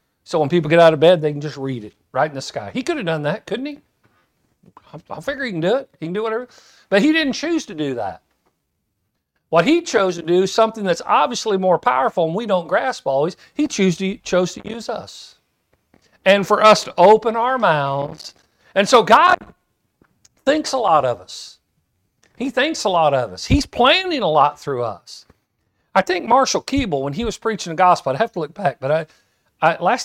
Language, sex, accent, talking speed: English, male, American, 220 wpm